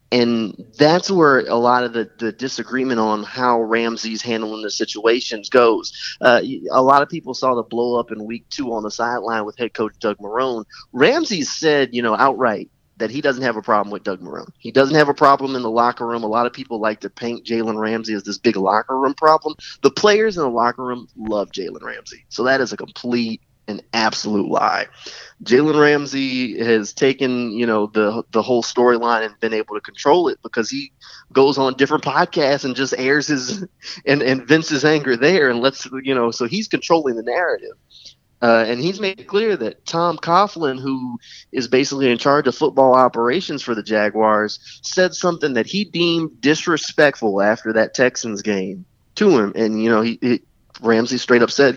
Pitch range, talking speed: 110-135 Hz, 200 wpm